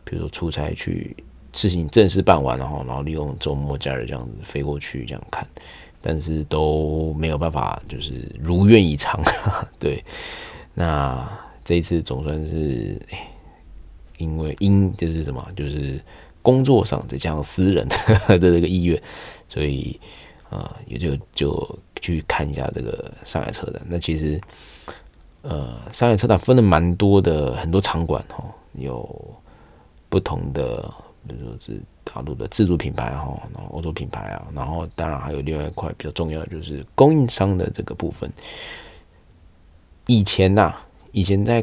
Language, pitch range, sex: Chinese, 75-90 Hz, male